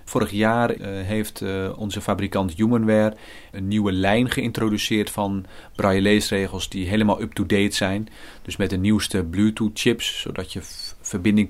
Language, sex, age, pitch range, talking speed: Dutch, male, 40-59, 95-110 Hz, 135 wpm